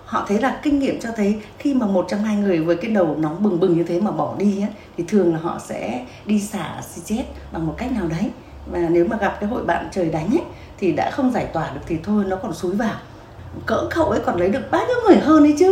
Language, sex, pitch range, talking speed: Vietnamese, female, 180-260 Hz, 280 wpm